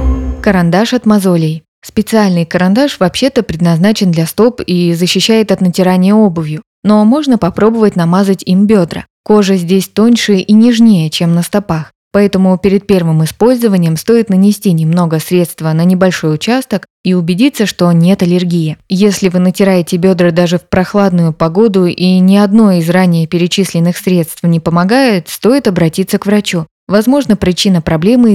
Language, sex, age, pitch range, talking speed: Russian, female, 20-39, 170-210 Hz, 145 wpm